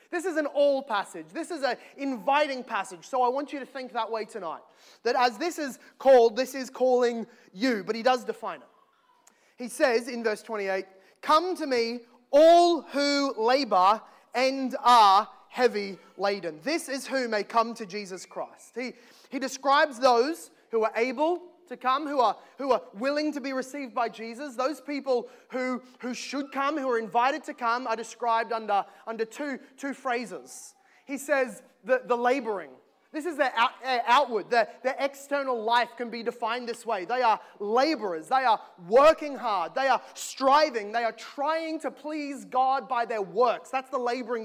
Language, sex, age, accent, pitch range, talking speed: English, male, 20-39, Australian, 230-275 Hz, 180 wpm